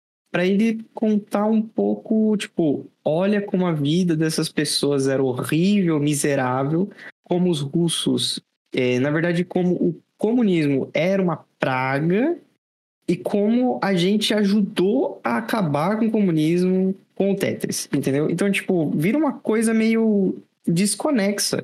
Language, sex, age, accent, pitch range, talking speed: Portuguese, male, 20-39, Brazilian, 155-225 Hz, 130 wpm